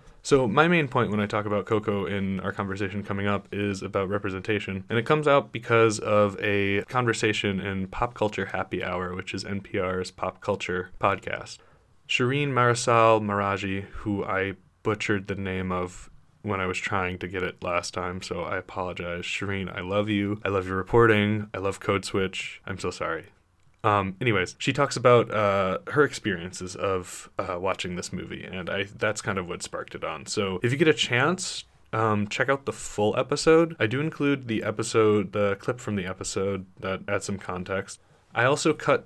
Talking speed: 190 wpm